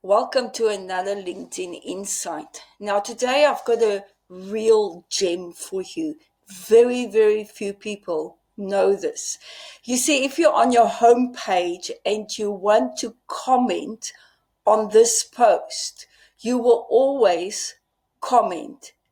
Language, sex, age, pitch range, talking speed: English, female, 50-69, 205-280 Hz, 125 wpm